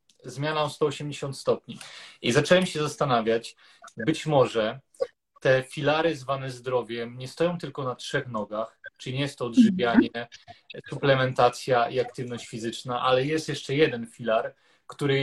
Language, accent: Polish, native